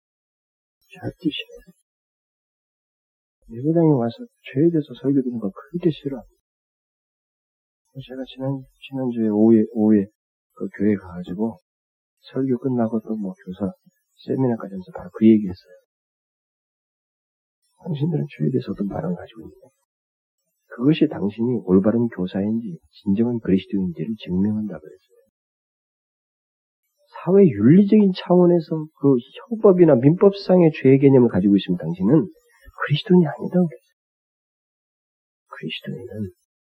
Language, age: Korean, 40-59